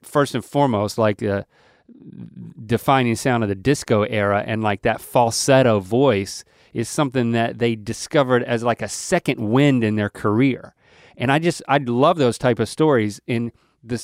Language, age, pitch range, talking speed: English, 30-49, 110-135 Hz, 170 wpm